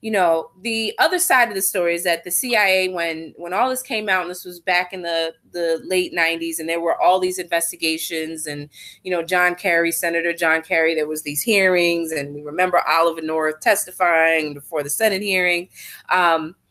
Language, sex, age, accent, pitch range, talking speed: English, female, 20-39, American, 165-205 Hz, 200 wpm